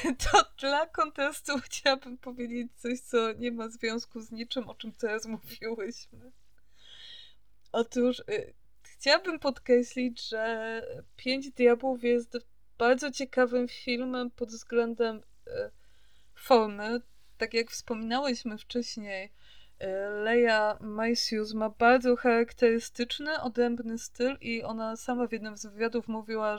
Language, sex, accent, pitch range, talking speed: Polish, female, native, 220-255 Hz, 110 wpm